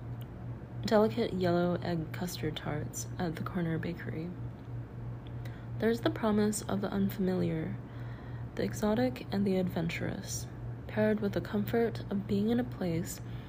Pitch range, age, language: 120-180 Hz, 20-39, English